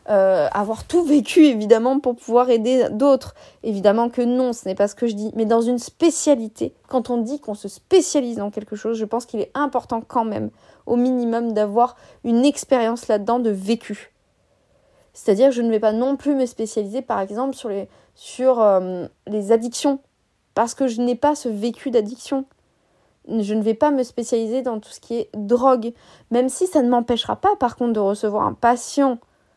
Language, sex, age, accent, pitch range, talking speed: French, female, 20-39, French, 215-255 Hz, 195 wpm